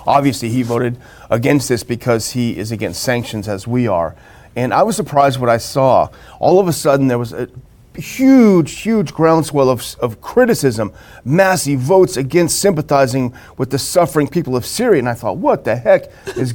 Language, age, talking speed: English, 40-59, 180 wpm